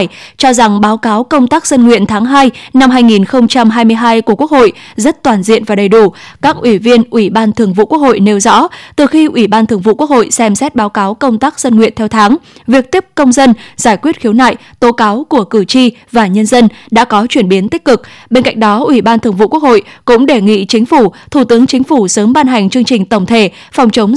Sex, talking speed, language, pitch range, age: female, 245 wpm, Vietnamese, 215-265 Hz, 10-29